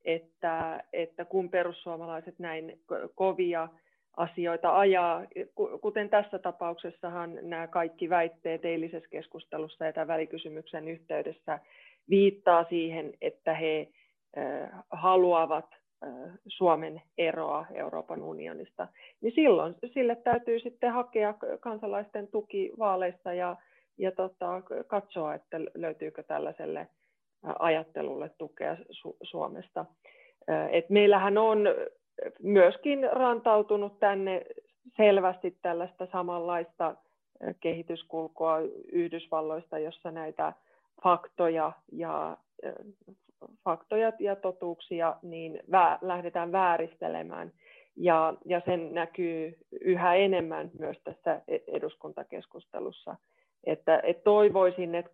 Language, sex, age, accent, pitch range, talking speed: Finnish, female, 30-49, native, 165-210 Hz, 90 wpm